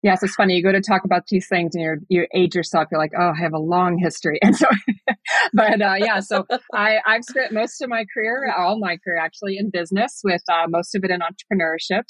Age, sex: 30-49, female